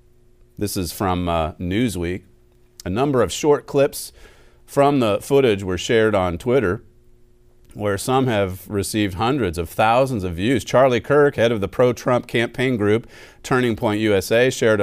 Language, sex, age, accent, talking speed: English, male, 40-59, American, 155 wpm